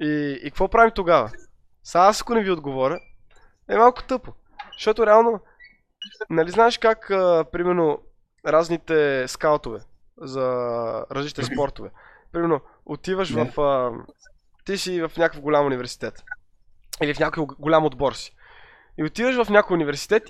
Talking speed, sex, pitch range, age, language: 135 wpm, male, 145-195 Hz, 20-39, Bulgarian